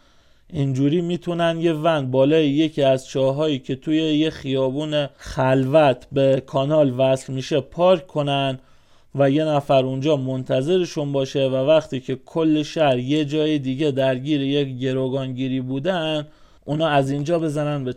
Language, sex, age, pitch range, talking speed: Persian, male, 30-49, 135-155 Hz, 140 wpm